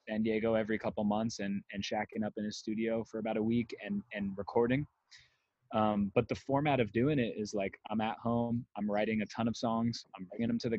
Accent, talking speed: American, 235 wpm